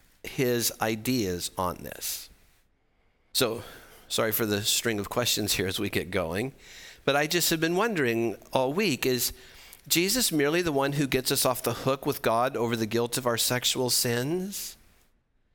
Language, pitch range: English, 100-140 Hz